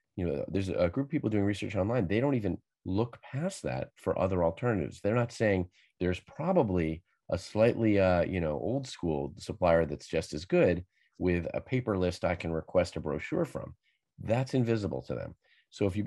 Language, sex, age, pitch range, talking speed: English, male, 40-59, 85-110 Hz, 200 wpm